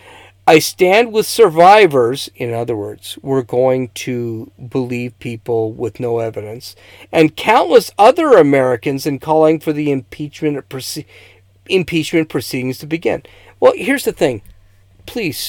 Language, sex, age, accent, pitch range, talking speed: English, male, 50-69, American, 100-155 Hz, 130 wpm